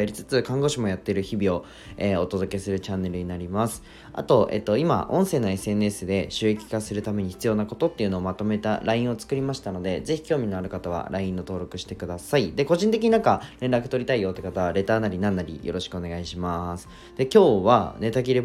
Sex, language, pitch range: male, Japanese, 95-130 Hz